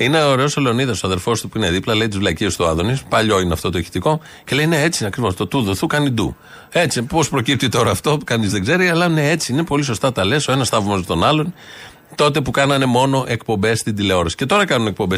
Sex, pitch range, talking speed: male, 105-145 Hz, 240 wpm